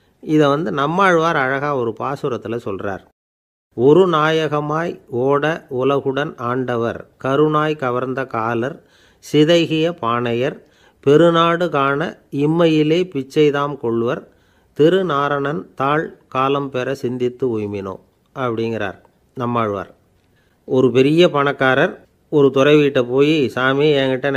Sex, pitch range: male, 120-150 Hz